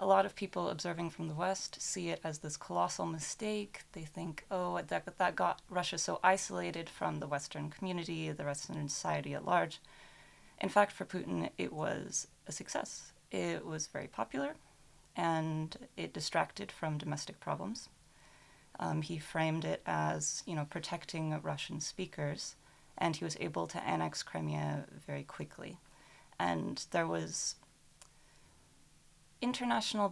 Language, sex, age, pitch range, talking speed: French, female, 30-49, 150-180 Hz, 145 wpm